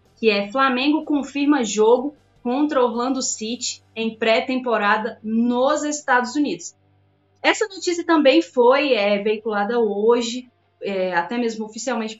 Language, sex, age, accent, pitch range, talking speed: Portuguese, female, 20-39, Brazilian, 210-265 Hz, 110 wpm